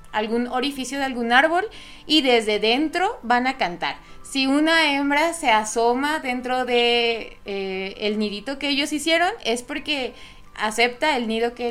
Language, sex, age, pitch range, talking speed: Spanish, female, 20-39, 215-275 Hz, 155 wpm